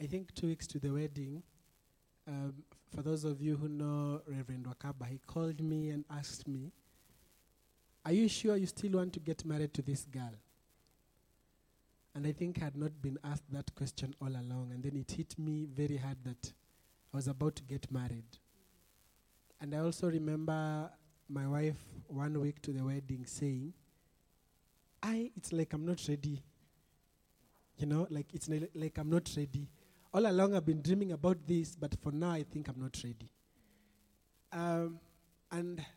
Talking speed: 175 wpm